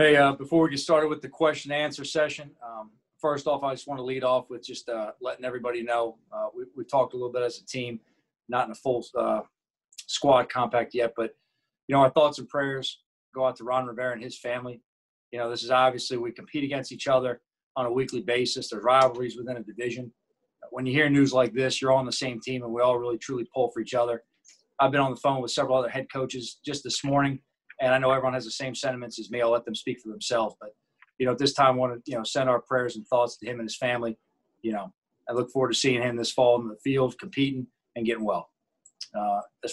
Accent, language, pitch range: American, English, 125-140 Hz